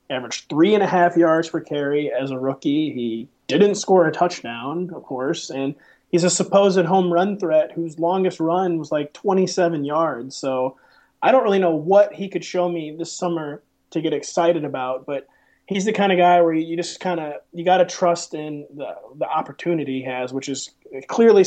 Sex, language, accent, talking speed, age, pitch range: male, English, American, 205 wpm, 30-49, 140-175 Hz